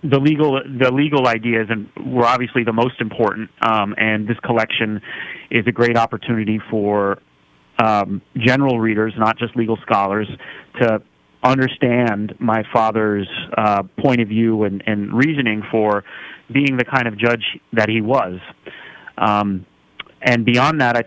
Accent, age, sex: American, 30-49, male